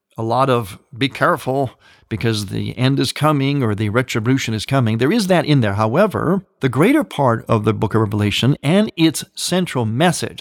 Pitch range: 115-160 Hz